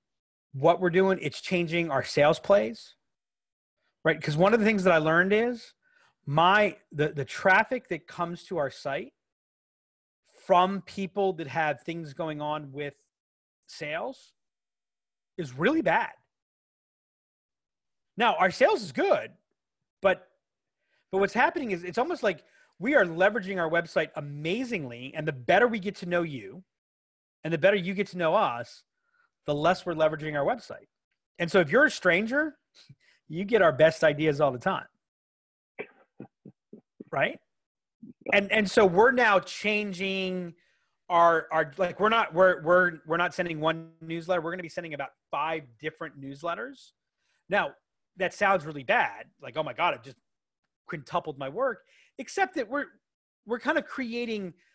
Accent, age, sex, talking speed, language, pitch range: American, 30-49, male, 155 wpm, English, 155-200 Hz